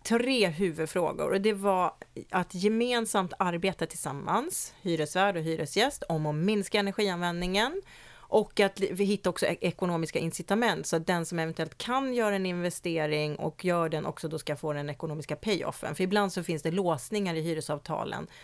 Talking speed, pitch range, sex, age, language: 165 wpm, 160-200 Hz, female, 30-49, English